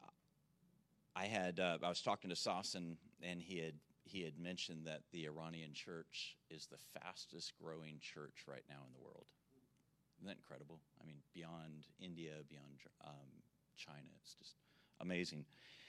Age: 40-59